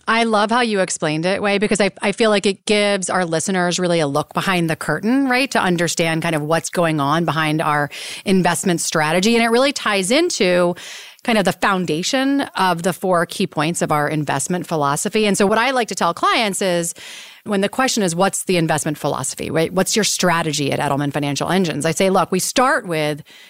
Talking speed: 210 wpm